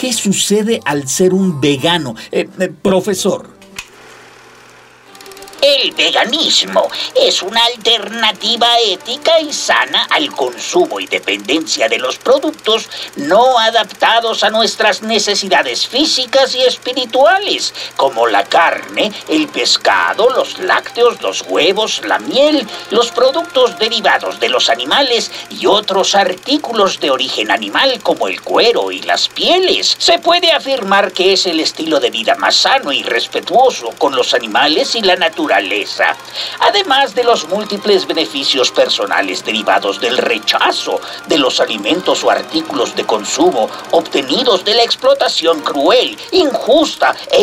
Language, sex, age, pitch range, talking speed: Spanish, male, 50-69, 200-315 Hz, 130 wpm